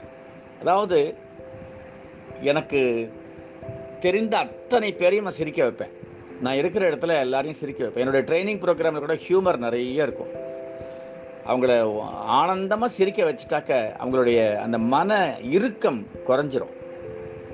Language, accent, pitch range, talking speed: Tamil, native, 105-165 Hz, 105 wpm